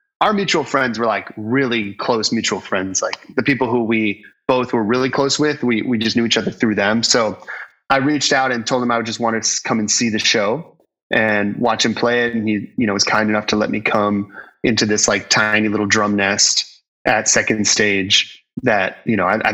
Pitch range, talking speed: 100-115 Hz, 230 wpm